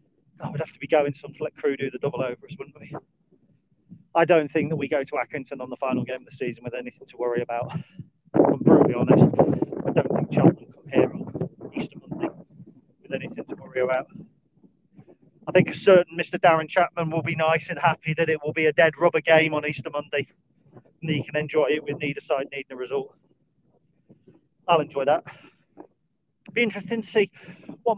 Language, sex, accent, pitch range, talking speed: English, male, British, 150-185 Hz, 205 wpm